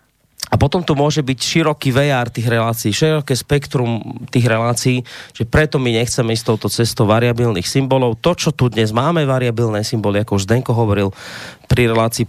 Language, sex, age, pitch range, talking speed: Slovak, male, 30-49, 105-120 Hz, 170 wpm